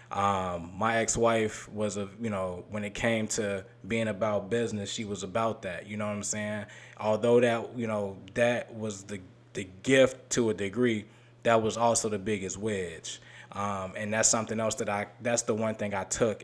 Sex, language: male, English